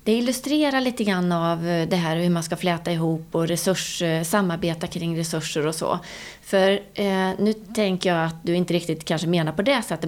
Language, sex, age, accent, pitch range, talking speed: English, female, 30-49, Swedish, 160-195 Hz, 195 wpm